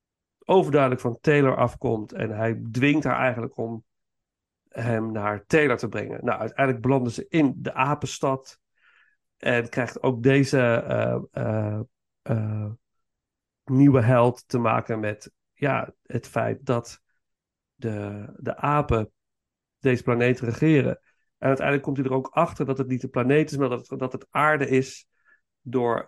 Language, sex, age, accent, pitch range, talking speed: Dutch, male, 50-69, Dutch, 120-145 Hz, 145 wpm